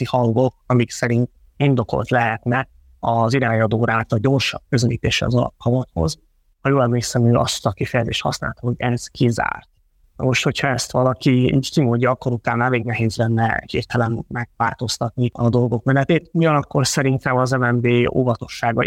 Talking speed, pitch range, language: 140 wpm, 115-130 Hz, Hungarian